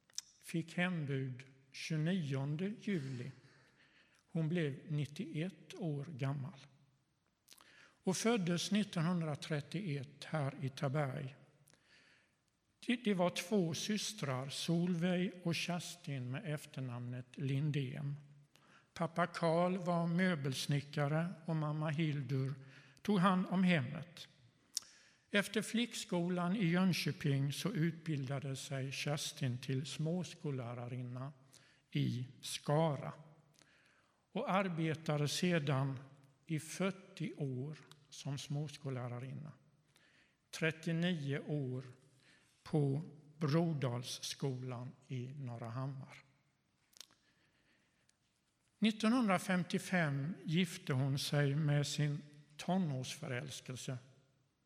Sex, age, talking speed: male, 60-79, 75 wpm